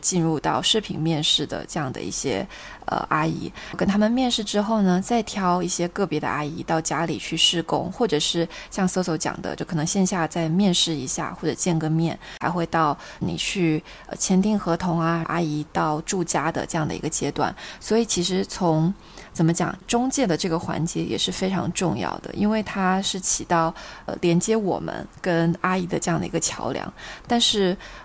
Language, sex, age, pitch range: Chinese, female, 20-39, 165-195 Hz